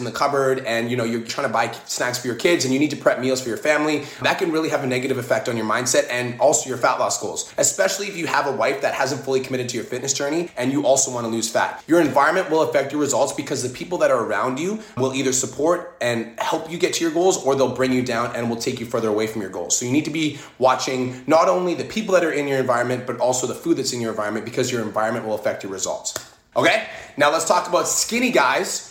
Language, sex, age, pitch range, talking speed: English, male, 20-39, 125-150 Hz, 280 wpm